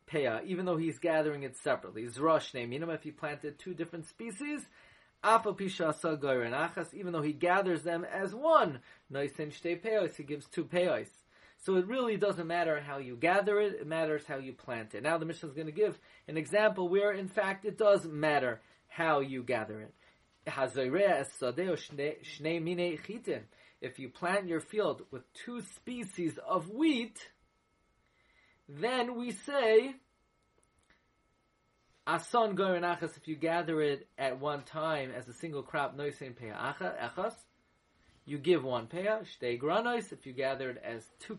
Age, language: 30-49, English